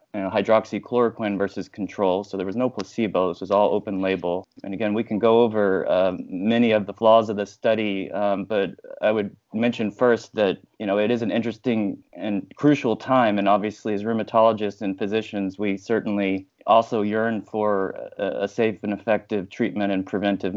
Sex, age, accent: male, 30-49, American